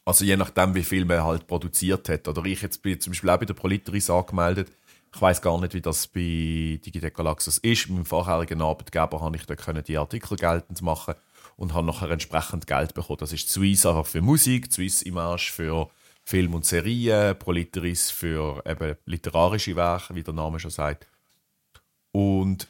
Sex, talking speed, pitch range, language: male, 180 wpm, 80-100 Hz, German